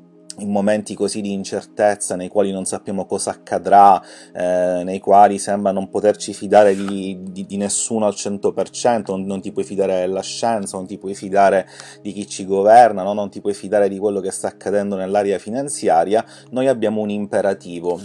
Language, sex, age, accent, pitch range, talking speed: Italian, male, 30-49, native, 100-110 Hz, 185 wpm